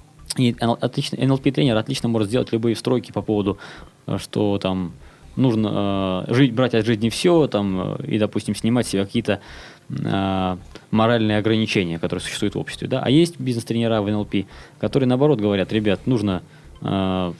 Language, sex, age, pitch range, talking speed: Russian, male, 20-39, 100-130 Hz, 140 wpm